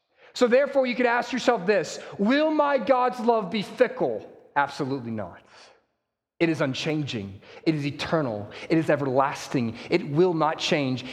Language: English